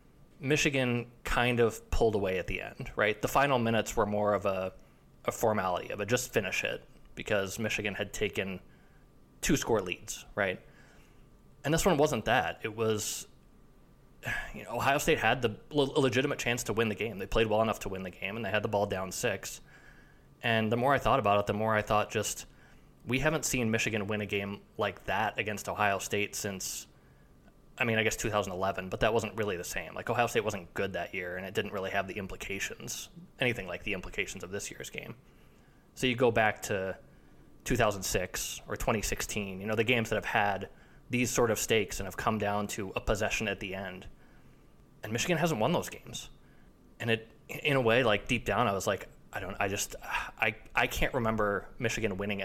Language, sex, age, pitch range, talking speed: English, male, 20-39, 100-120 Hz, 210 wpm